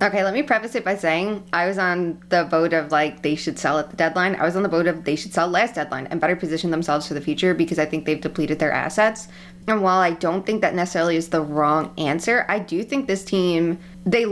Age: 20-39